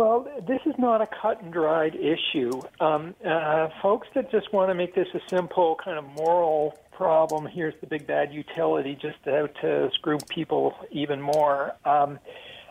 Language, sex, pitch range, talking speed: English, male, 160-220 Hz, 170 wpm